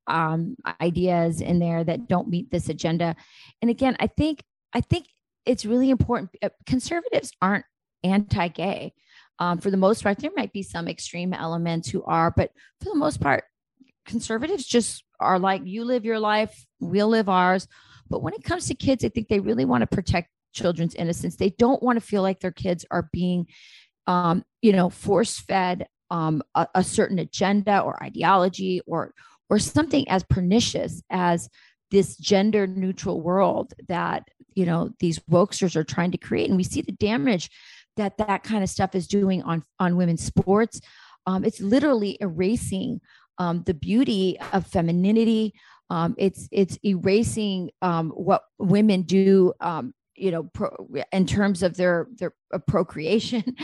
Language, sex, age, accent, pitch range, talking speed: English, female, 30-49, American, 175-215 Hz, 165 wpm